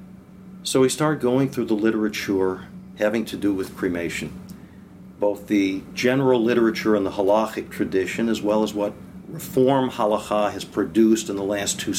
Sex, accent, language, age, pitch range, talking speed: male, American, English, 50-69, 100-130 Hz, 160 wpm